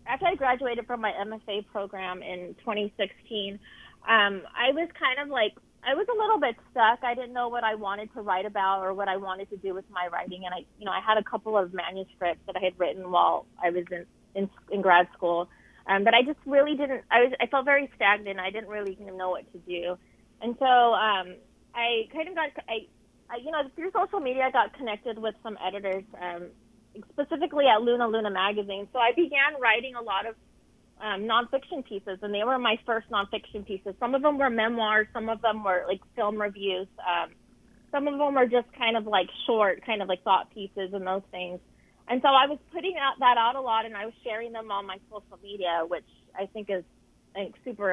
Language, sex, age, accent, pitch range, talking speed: English, female, 30-49, American, 195-245 Hz, 220 wpm